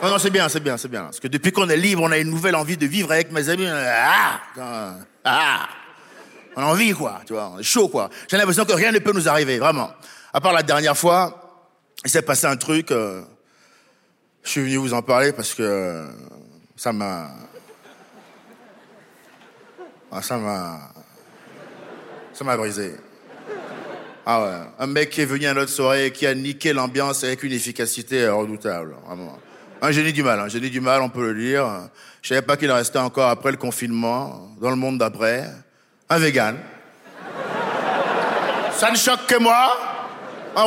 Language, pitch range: French, 135-220 Hz